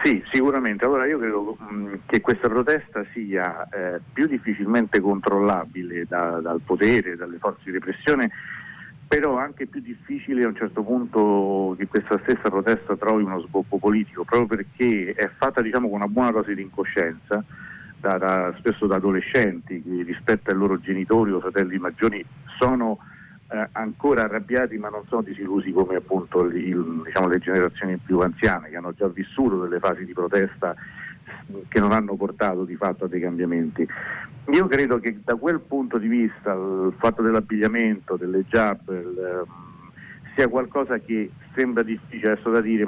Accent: native